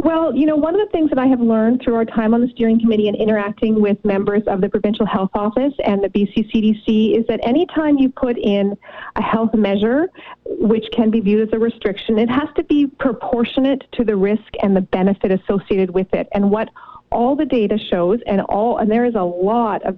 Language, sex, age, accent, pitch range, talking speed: English, female, 40-59, American, 205-245 Hz, 230 wpm